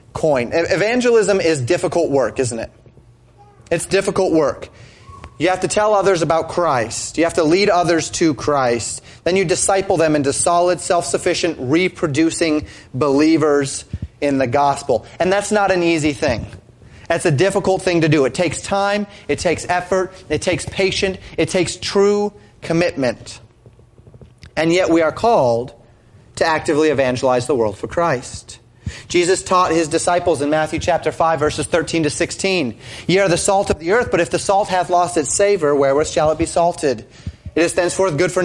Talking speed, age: 175 wpm, 30-49